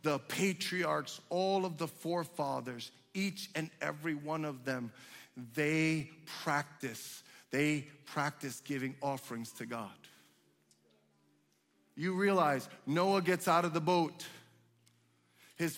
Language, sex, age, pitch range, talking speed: English, male, 40-59, 155-225 Hz, 110 wpm